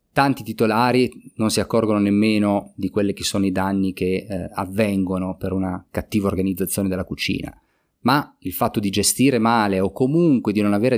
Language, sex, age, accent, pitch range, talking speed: Italian, male, 30-49, native, 100-115 Hz, 175 wpm